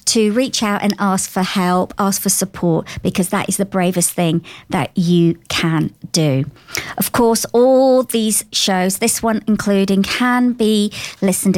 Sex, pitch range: male, 175-215 Hz